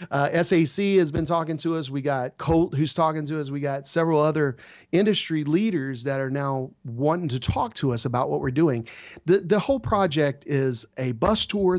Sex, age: male, 40-59